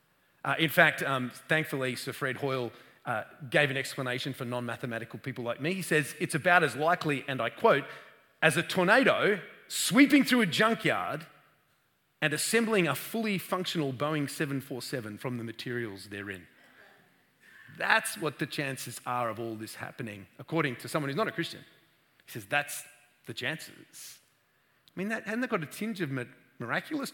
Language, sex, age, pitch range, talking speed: English, male, 30-49, 130-195 Hz, 170 wpm